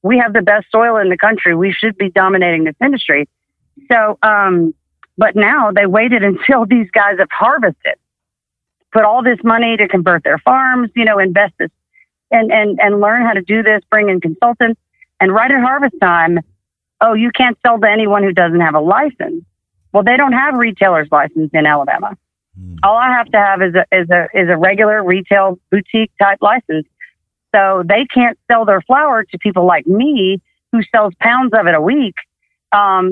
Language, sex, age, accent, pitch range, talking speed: English, female, 40-59, American, 185-235 Hz, 195 wpm